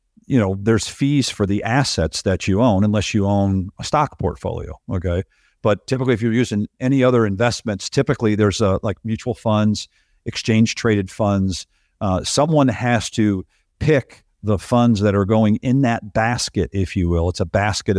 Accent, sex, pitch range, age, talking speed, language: American, male, 95-115 Hz, 50-69, 175 wpm, English